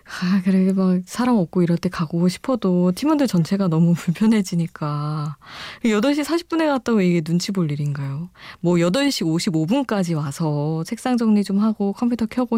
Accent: native